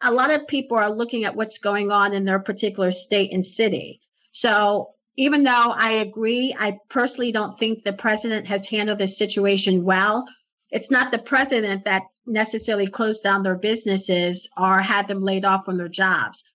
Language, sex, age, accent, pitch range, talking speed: English, female, 50-69, American, 195-225 Hz, 180 wpm